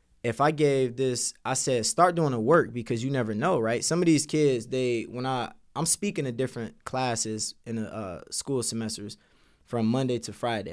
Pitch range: 110-135 Hz